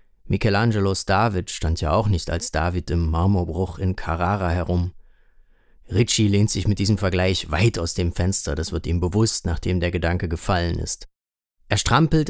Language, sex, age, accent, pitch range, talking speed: German, male, 30-49, German, 90-120 Hz, 165 wpm